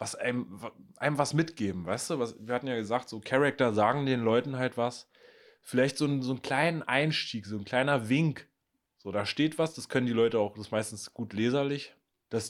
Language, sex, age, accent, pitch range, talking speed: German, male, 20-39, German, 105-140 Hz, 215 wpm